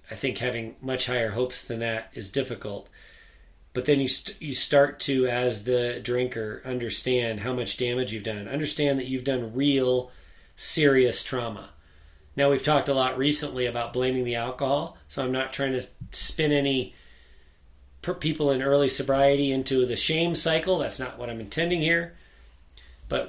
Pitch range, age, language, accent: 115-150 Hz, 30-49, English, American